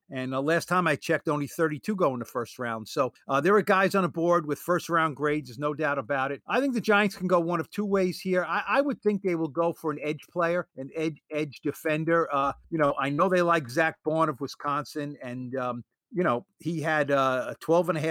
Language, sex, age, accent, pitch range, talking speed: English, male, 50-69, American, 140-170 Hz, 245 wpm